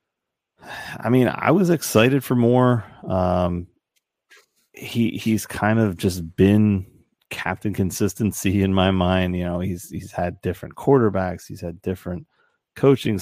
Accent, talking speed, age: American, 135 wpm, 30-49